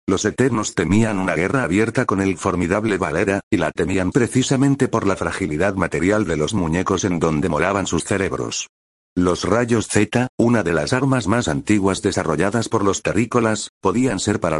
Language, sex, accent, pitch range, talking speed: Spanish, male, Spanish, 90-115 Hz, 175 wpm